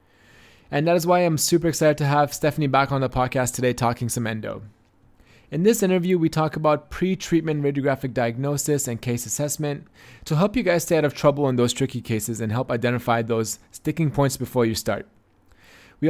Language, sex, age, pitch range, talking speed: English, male, 20-39, 120-155 Hz, 195 wpm